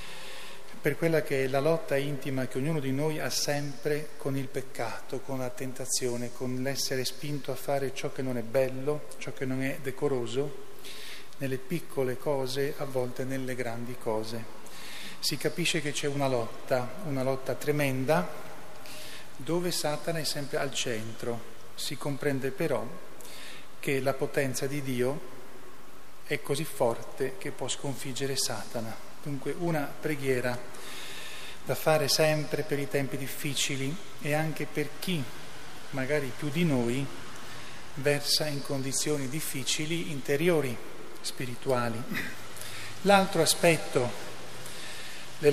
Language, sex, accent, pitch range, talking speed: Italian, male, native, 130-150 Hz, 130 wpm